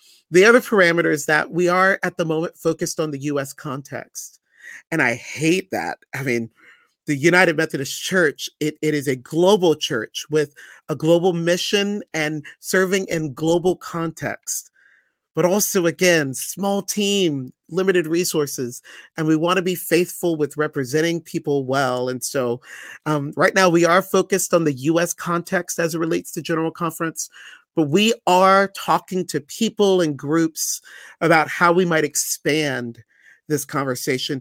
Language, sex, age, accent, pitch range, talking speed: English, male, 40-59, American, 145-175 Hz, 155 wpm